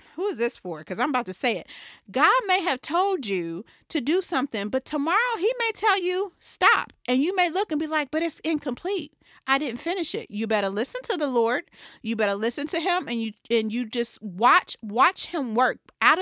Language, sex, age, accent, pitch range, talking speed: English, female, 40-59, American, 220-310 Hz, 220 wpm